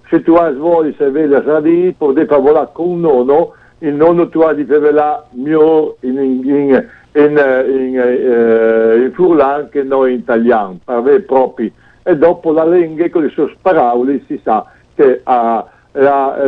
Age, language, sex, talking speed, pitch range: 60-79, Italian, male, 175 wpm, 135-175 Hz